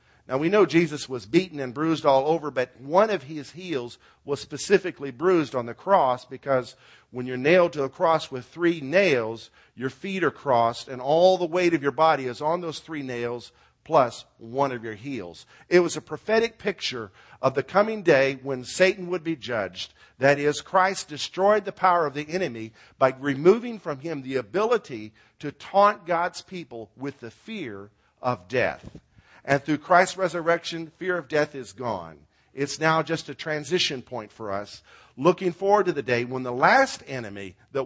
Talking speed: 185 wpm